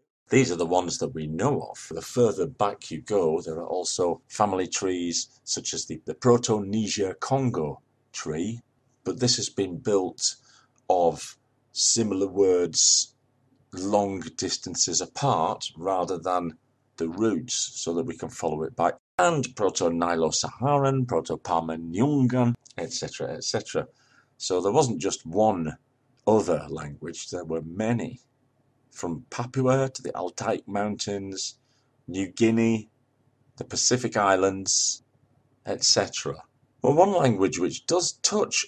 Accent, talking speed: British, 130 wpm